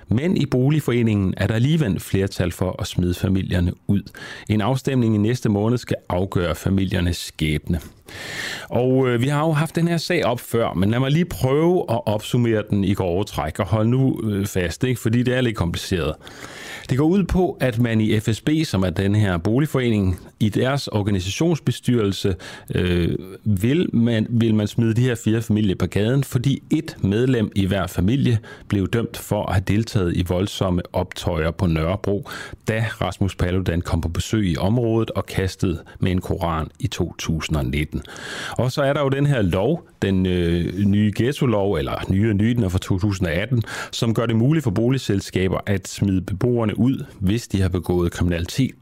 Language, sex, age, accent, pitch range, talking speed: Danish, male, 30-49, native, 95-120 Hz, 175 wpm